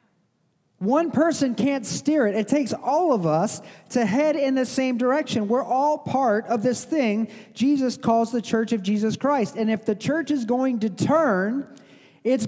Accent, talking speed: American, 185 wpm